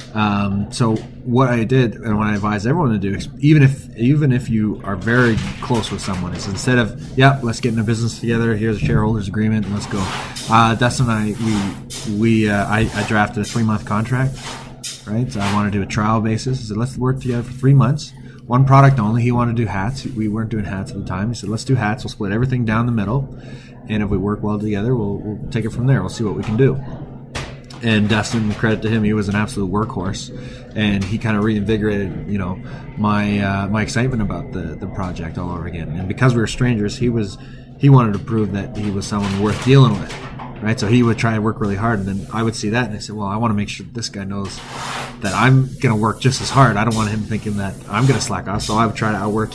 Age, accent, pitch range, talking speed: 20-39, American, 105-125 Hz, 255 wpm